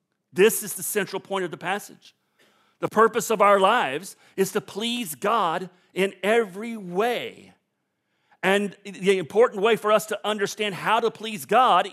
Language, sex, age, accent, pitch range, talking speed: English, male, 40-59, American, 155-205 Hz, 160 wpm